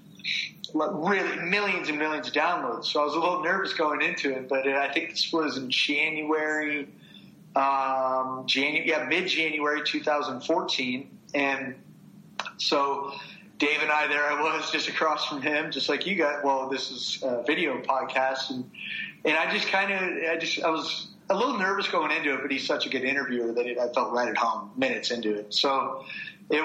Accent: American